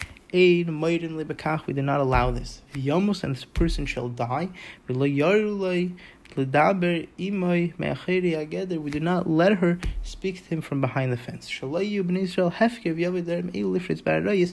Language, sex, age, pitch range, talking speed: English, male, 20-39, 125-175 Hz, 95 wpm